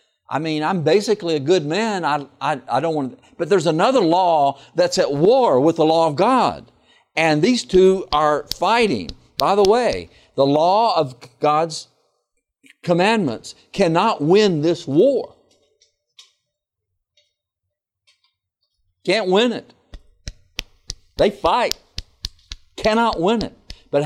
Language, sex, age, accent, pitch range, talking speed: English, male, 60-79, American, 125-185 Hz, 125 wpm